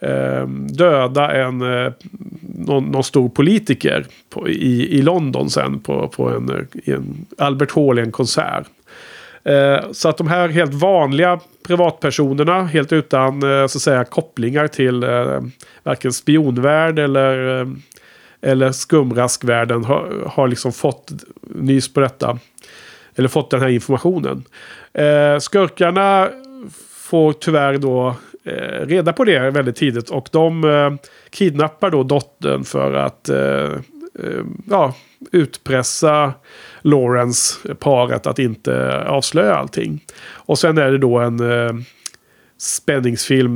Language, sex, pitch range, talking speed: Swedish, male, 120-150 Hz, 115 wpm